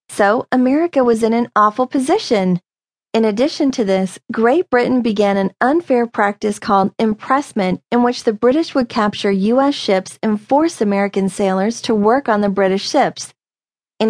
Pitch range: 200-255 Hz